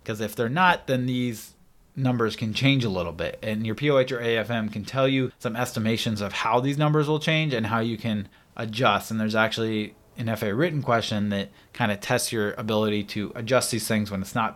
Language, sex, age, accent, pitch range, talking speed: English, male, 20-39, American, 105-135 Hz, 220 wpm